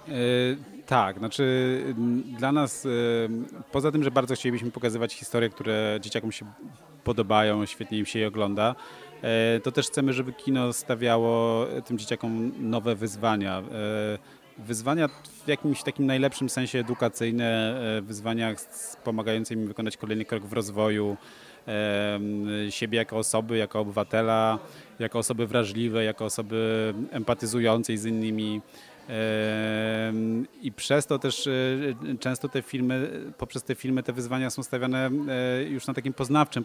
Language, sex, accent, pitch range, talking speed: Polish, male, native, 110-130 Hz, 125 wpm